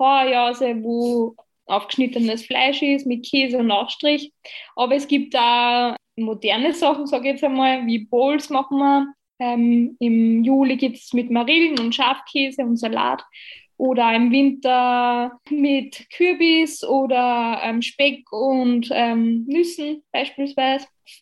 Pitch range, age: 240-290 Hz, 20-39